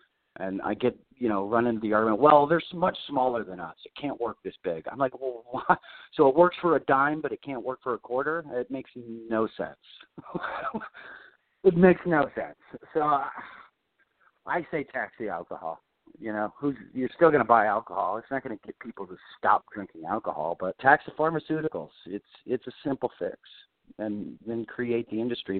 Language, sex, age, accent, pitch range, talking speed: English, male, 40-59, American, 110-140 Hz, 200 wpm